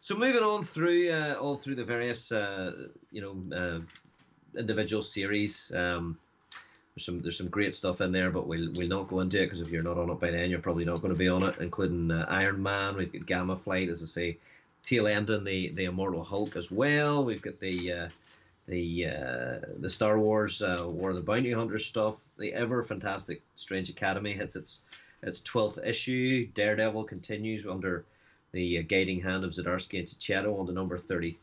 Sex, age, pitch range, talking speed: male, 30-49, 90-115 Hz, 200 wpm